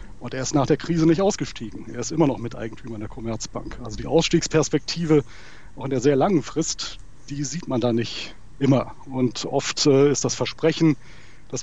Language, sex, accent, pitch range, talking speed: German, male, German, 125-155 Hz, 190 wpm